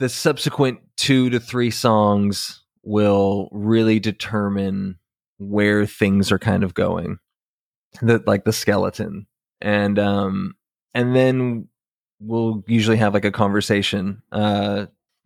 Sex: male